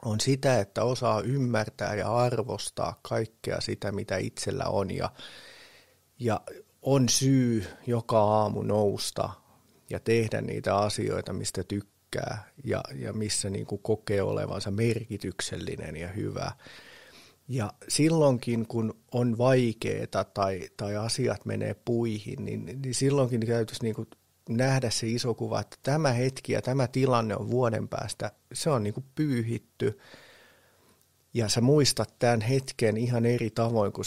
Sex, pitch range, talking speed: male, 105-130 Hz, 130 wpm